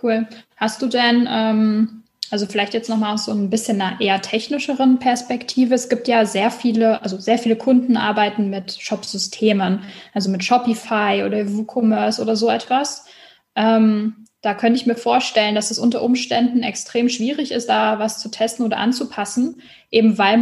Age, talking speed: 10-29, 170 wpm